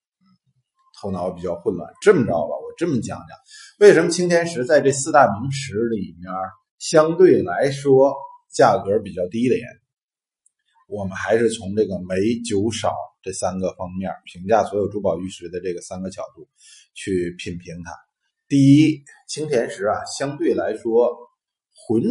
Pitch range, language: 100-150 Hz, Chinese